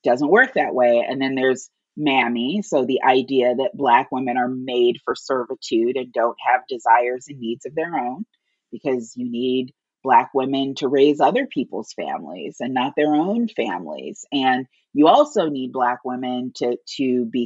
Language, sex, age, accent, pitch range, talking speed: English, female, 30-49, American, 120-150 Hz, 175 wpm